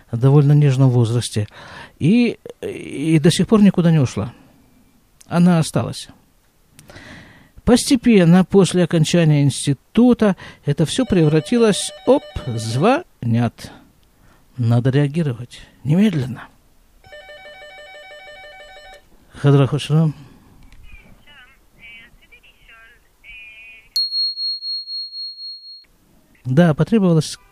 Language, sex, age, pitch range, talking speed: Russian, male, 50-69, 120-170 Hz, 65 wpm